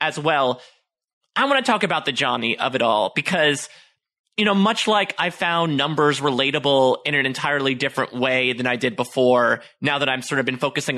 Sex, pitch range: male, 140-200 Hz